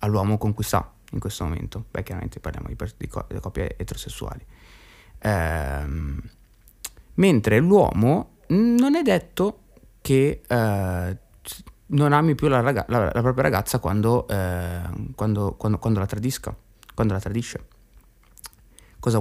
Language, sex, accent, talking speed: Italian, male, native, 135 wpm